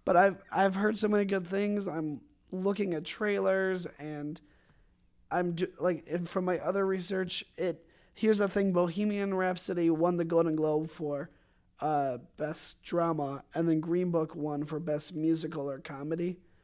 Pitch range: 150-175 Hz